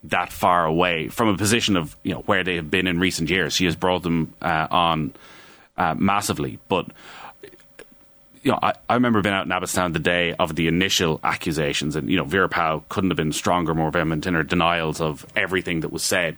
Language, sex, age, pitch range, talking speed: English, male, 30-49, 90-125 Hz, 215 wpm